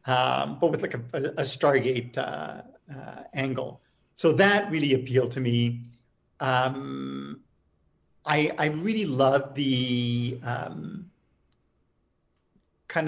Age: 50-69